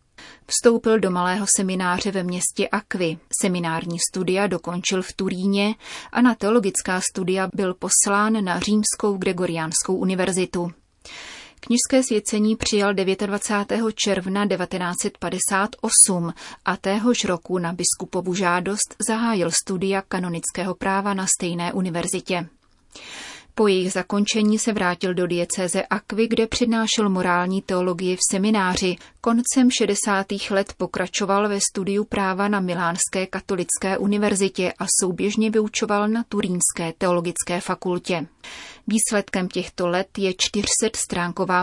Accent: native